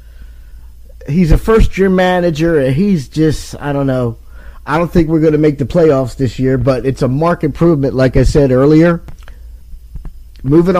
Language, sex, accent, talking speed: English, male, American, 170 wpm